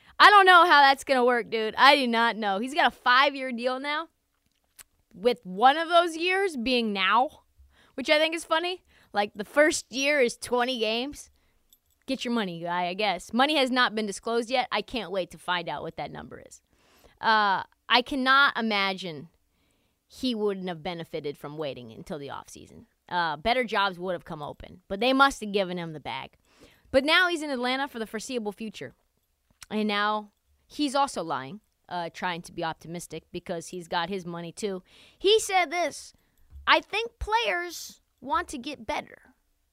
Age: 20-39